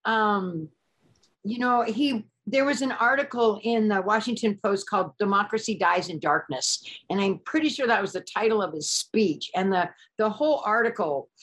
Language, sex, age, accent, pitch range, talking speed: English, female, 50-69, American, 190-245 Hz, 175 wpm